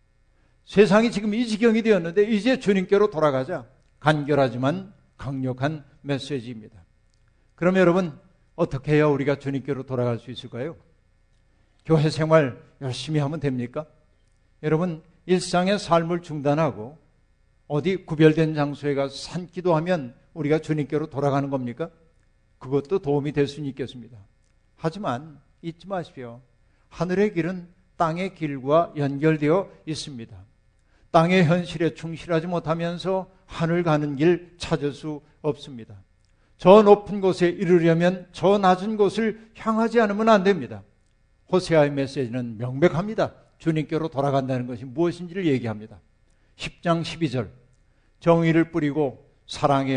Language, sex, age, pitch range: Korean, male, 50-69, 125-170 Hz